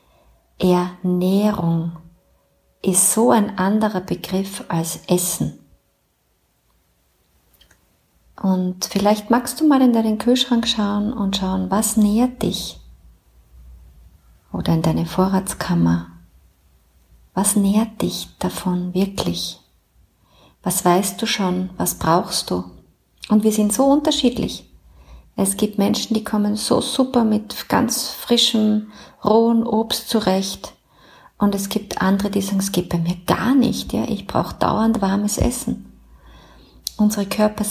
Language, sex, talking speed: German, female, 120 wpm